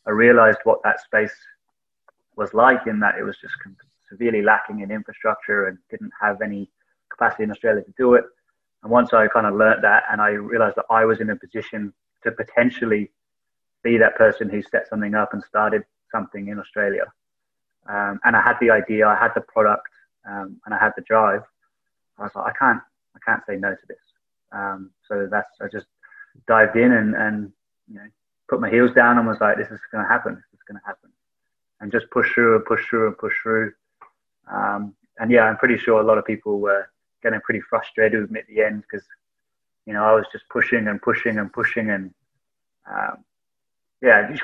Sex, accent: male, British